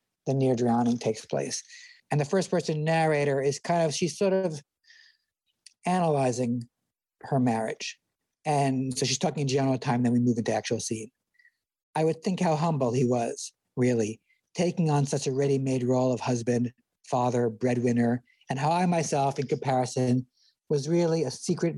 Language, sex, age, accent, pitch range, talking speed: English, male, 60-79, American, 130-170 Hz, 165 wpm